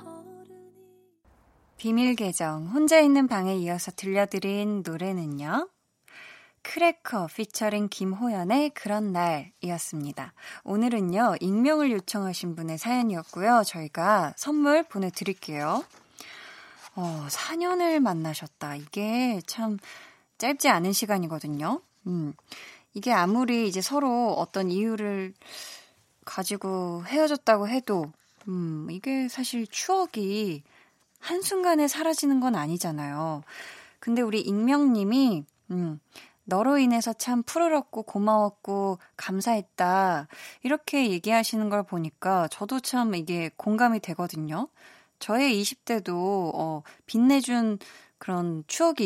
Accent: native